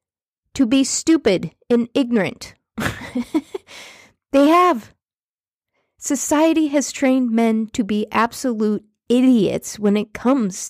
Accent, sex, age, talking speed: American, female, 40-59, 100 wpm